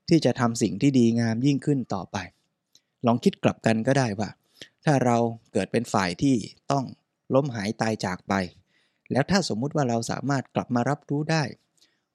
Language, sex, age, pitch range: Thai, male, 20-39, 110-140 Hz